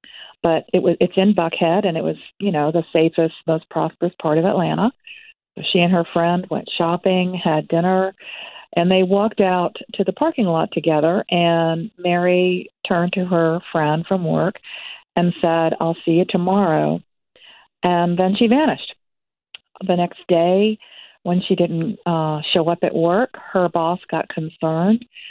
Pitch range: 165-195 Hz